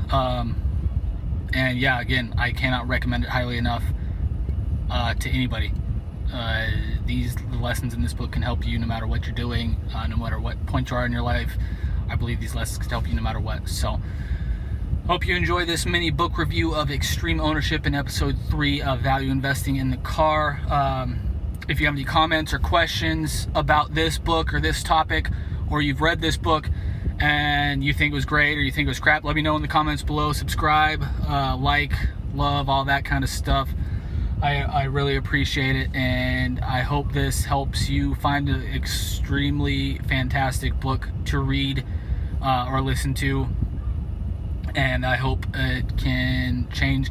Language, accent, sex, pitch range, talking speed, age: English, American, male, 80-135 Hz, 180 wpm, 20-39